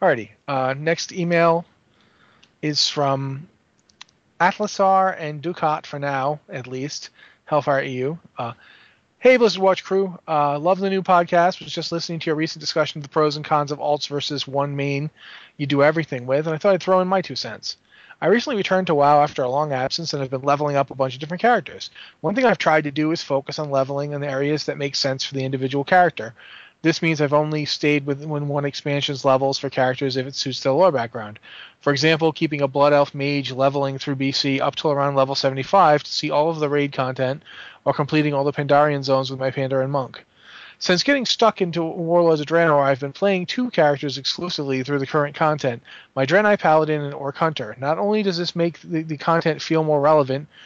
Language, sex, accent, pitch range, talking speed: English, male, American, 140-165 Hz, 205 wpm